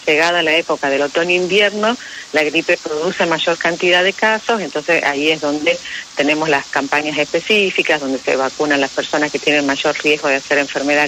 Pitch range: 145-175 Hz